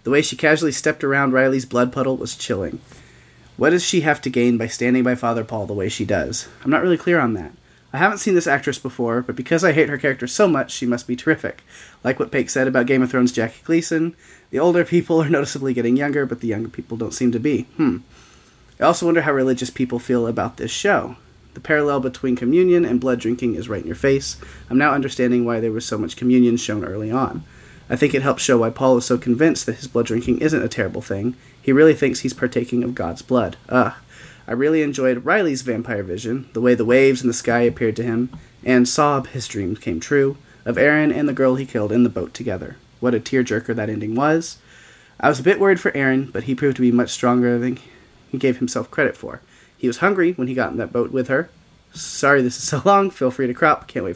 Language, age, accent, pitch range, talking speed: English, 30-49, American, 120-140 Hz, 240 wpm